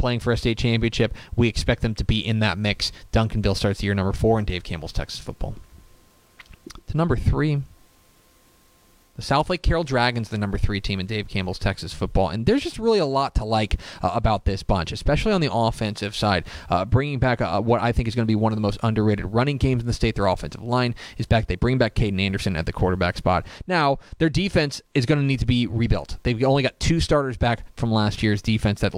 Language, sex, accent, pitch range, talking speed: English, male, American, 100-125 Hz, 230 wpm